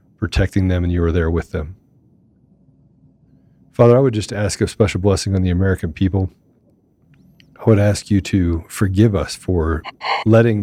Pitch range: 90-110 Hz